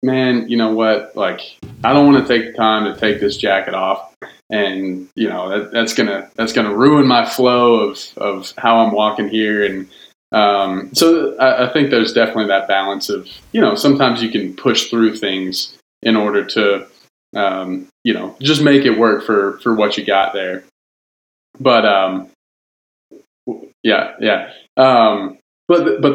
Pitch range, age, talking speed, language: 100-125 Hz, 20-39, 180 wpm, English